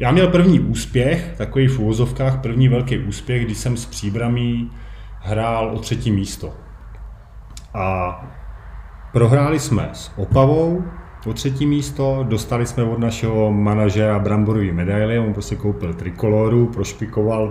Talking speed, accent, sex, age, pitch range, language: 130 wpm, native, male, 30-49, 95-115 Hz, Czech